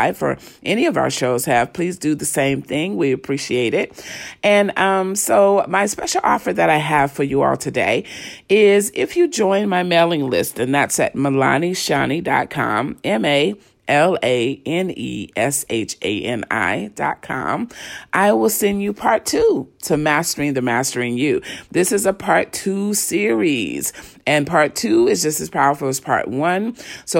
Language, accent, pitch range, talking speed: English, American, 135-195 Hz, 155 wpm